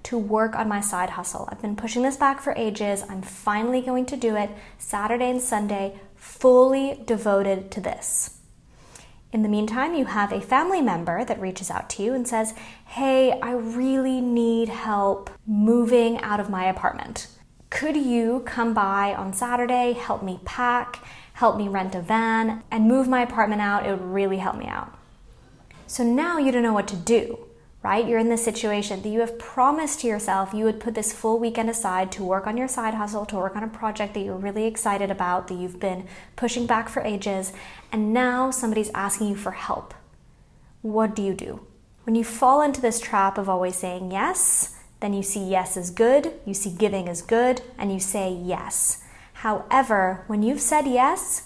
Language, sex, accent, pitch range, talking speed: English, female, American, 200-245 Hz, 195 wpm